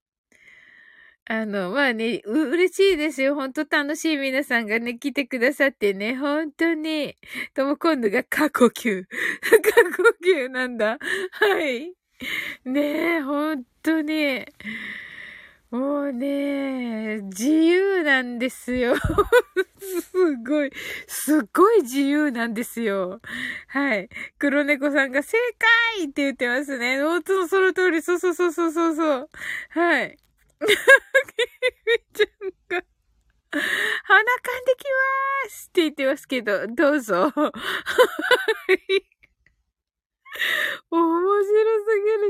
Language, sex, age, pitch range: Japanese, female, 20-39, 275-375 Hz